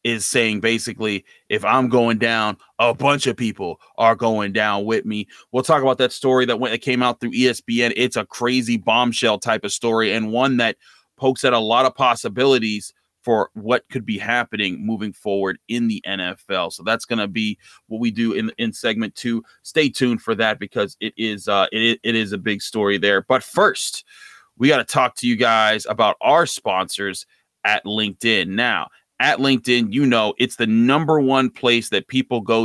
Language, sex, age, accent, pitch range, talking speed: English, male, 30-49, American, 110-130 Hz, 200 wpm